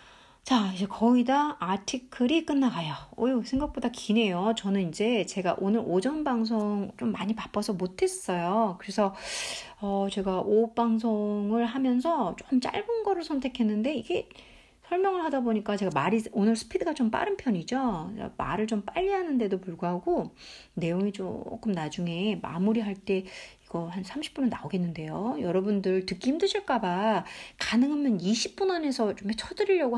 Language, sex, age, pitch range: Korean, female, 40-59, 190-265 Hz